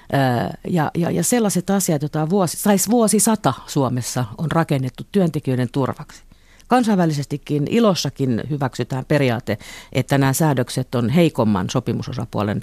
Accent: native